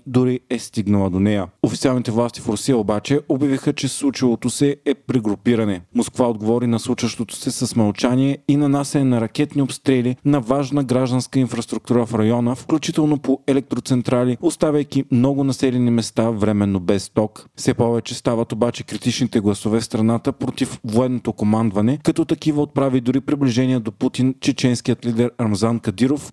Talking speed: 150 wpm